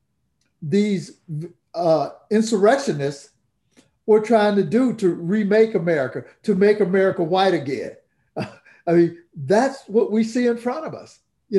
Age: 50-69